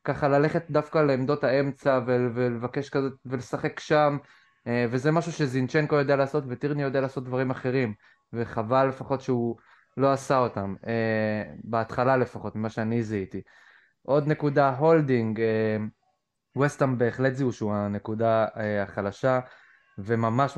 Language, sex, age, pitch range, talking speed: Hebrew, male, 20-39, 115-140 Hz, 115 wpm